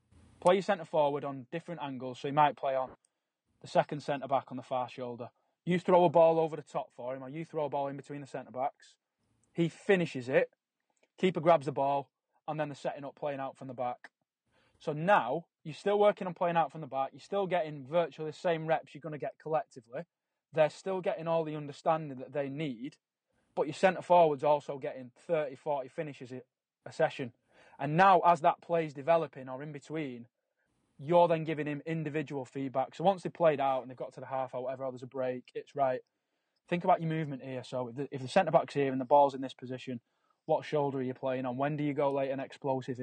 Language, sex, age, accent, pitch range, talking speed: English, male, 20-39, British, 135-165 Hz, 225 wpm